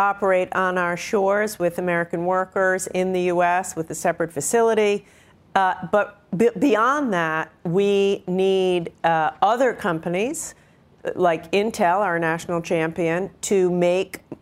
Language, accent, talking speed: English, American, 125 wpm